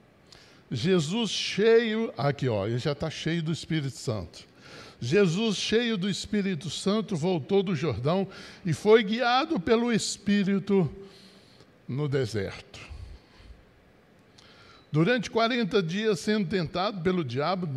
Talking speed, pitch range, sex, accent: 110 wpm, 150-200 Hz, male, Brazilian